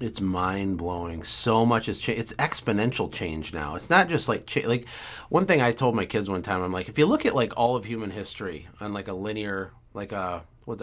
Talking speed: 235 wpm